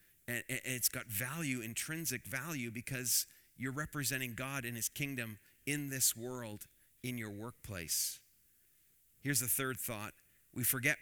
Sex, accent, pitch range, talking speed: male, American, 105-130 Hz, 135 wpm